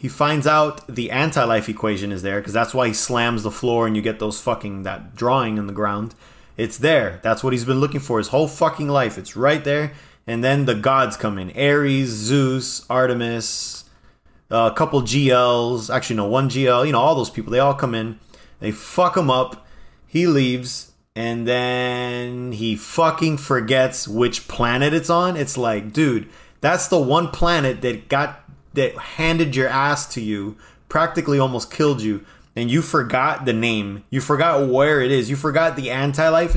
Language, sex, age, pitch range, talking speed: English, male, 30-49, 115-155 Hz, 185 wpm